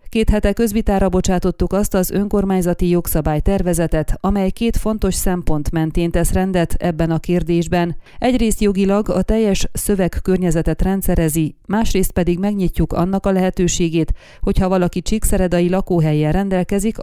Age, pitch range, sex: 30-49, 170-195 Hz, female